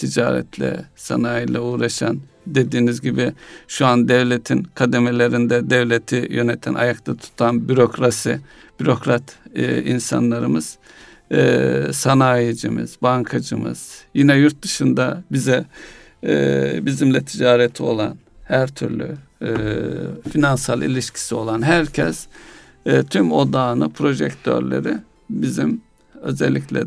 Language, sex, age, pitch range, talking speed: Turkish, male, 60-79, 110-140 Hz, 90 wpm